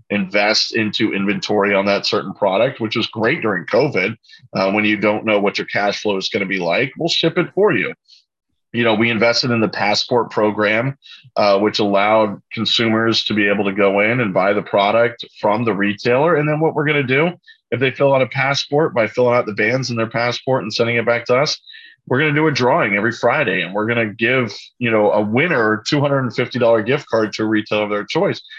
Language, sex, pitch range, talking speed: English, male, 105-130 Hz, 230 wpm